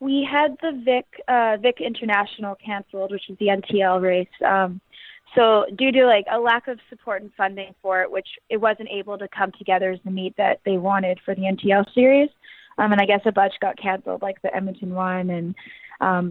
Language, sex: English, female